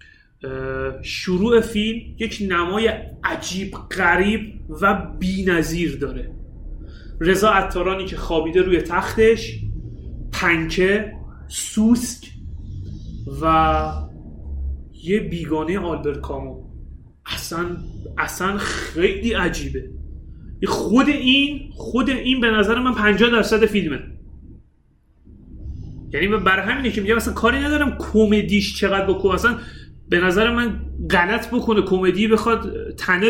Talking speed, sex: 95 wpm, male